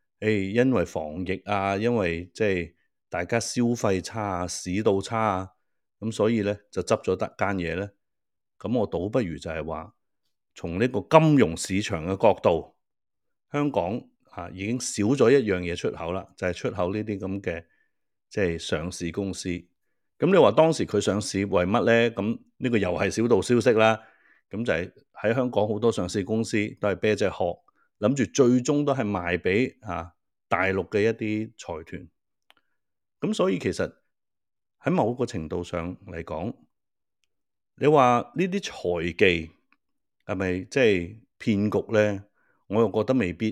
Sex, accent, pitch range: male, native, 90-115 Hz